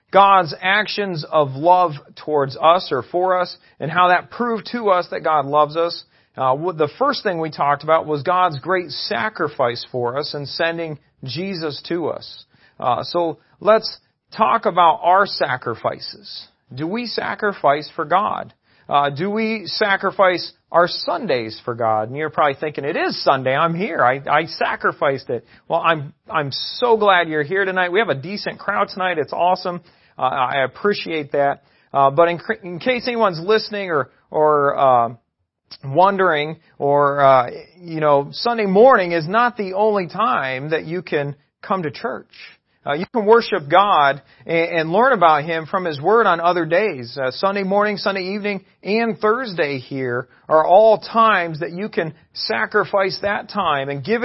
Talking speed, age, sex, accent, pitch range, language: 170 wpm, 40-59, male, American, 145-200 Hz, English